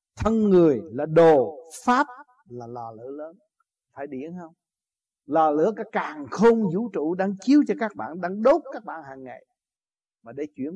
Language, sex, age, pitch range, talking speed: Vietnamese, male, 60-79, 140-210 Hz, 185 wpm